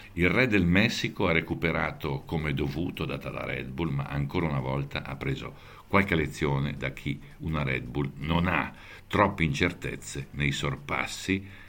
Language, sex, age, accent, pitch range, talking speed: Italian, male, 60-79, native, 75-100 Hz, 160 wpm